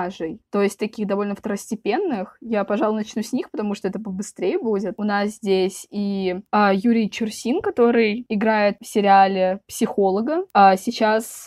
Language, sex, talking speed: Russian, female, 150 wpm